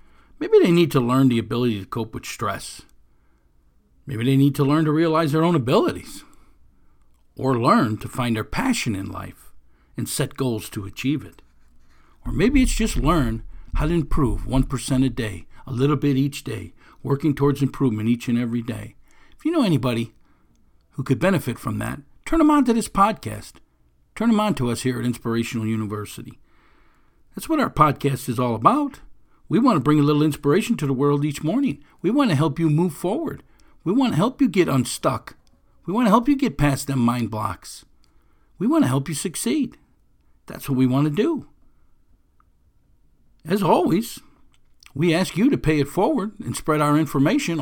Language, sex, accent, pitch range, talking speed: English, male, American, 115-165 Hz, 190 wpm